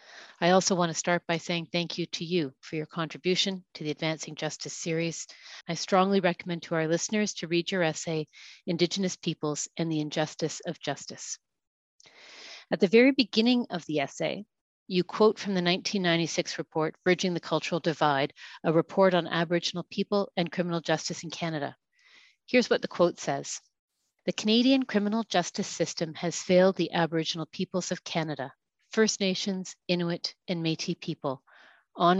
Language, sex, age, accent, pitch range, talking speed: English, female, 40-59, American, 160-185 Hz, 160 wpm